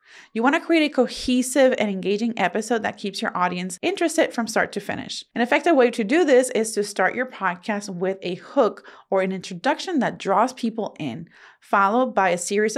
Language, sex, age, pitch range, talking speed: English, female, 30-49, 195-250 Hz, 200 wpm